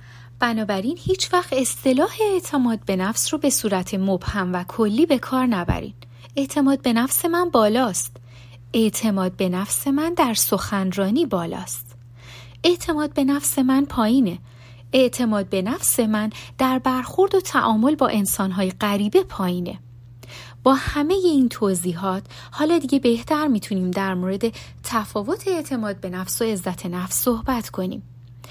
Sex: female